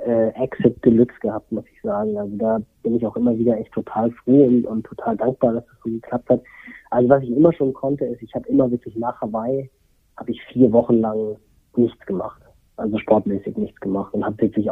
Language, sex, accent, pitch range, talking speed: German, male, German, 115-135 Hz, 210 wpm